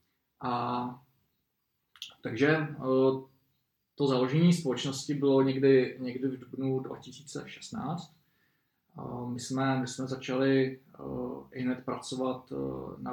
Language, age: Czech, 20-39